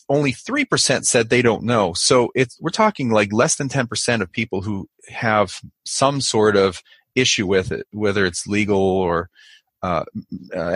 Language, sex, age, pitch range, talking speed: English, male, 30-49, 100-125 Hz, 160 wpm